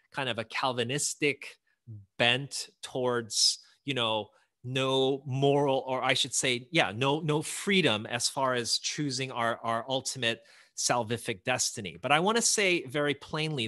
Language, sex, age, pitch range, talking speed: English, male, 30-49, 130-175 Hz, 150 wpm